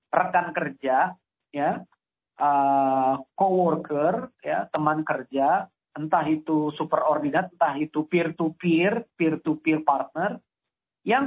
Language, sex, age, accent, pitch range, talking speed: Indonesian, male, 40-59, native, 155-215 Hz, 110 wpm